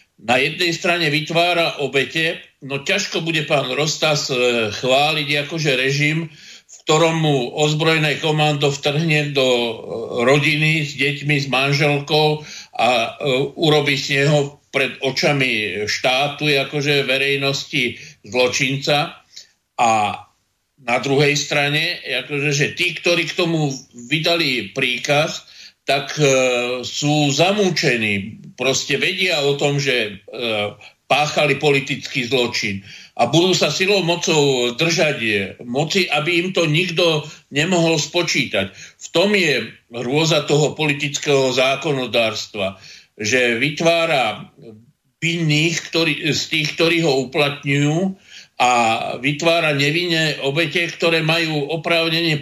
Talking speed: 110 wpm